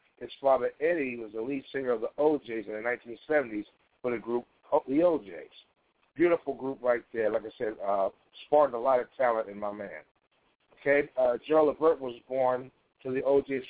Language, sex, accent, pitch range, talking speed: English, male, American, 115-145 Hz, 190 wpm